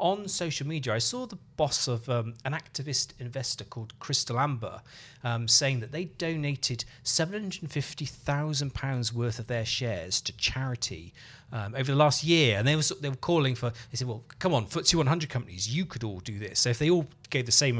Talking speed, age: 200 wpm, 40-59